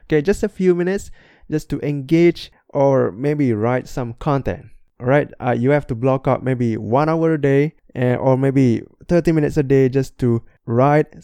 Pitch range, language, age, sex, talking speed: 125-150 Hz, English, 20-39, male, 185 wpm